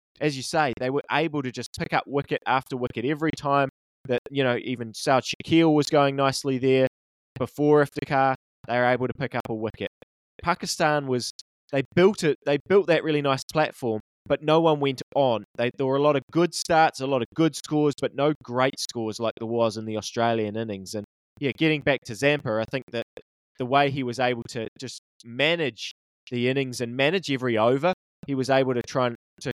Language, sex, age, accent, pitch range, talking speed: English, male, 20-39, Australian, 120-145 Hz, 210 wpm